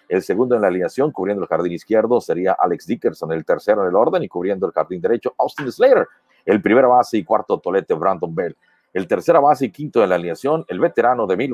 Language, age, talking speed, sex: Spanish, 50-69, 230 wpm, male